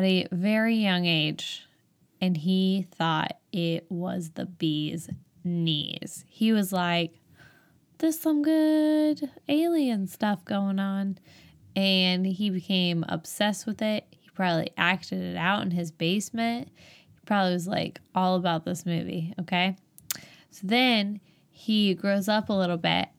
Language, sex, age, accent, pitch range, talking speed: English, female, 10-29, American, 170-210 Hz, 135 wpm